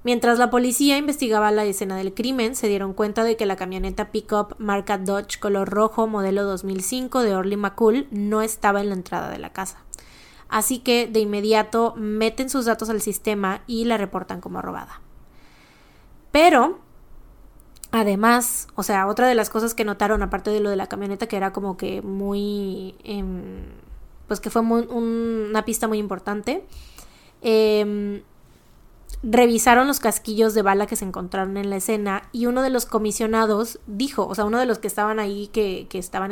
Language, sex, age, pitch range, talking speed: Spanish, female, 20-39, 200-230 Hz, 175 wpm